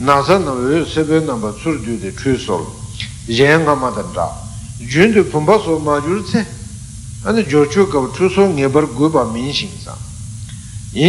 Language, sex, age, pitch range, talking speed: Italian, male, 60-79, 110-155 Hz, 105 wpm